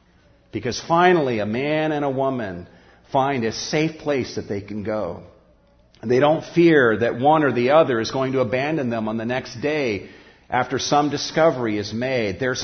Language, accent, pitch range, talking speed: English, American, 110-150 Hz, 180 wpm